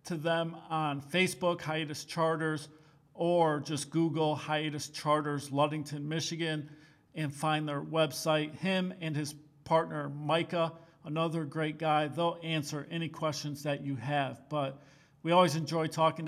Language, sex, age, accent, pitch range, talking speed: English, male, 40-59, American, 150-175 Hz, 135 wpm